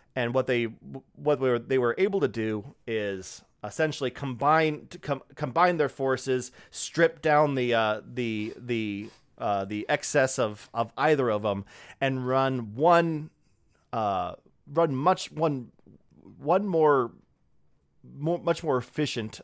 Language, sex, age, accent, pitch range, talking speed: English, male, 30-49, American, 115-150 Hz, 140 wpm